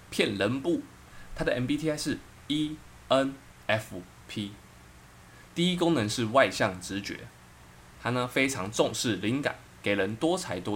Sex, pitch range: male, 90-125 Hz